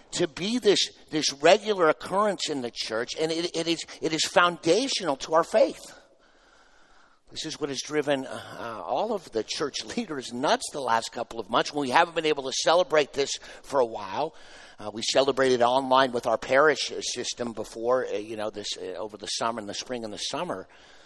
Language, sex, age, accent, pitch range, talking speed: English, male, 50-69, American, 120-165 Hz, 195 wpm